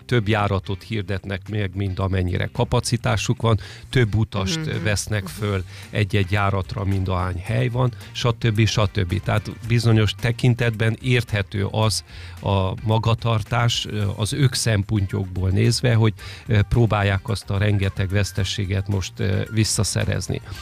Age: 40-59